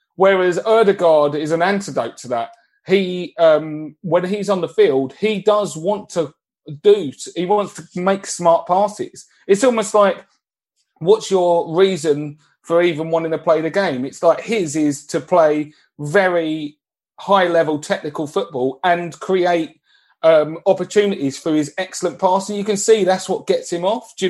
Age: 30-49